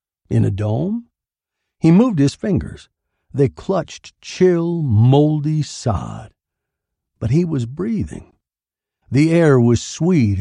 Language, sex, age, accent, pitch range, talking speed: English, male, 60-79, American, 115-165 Hz, 115 wpm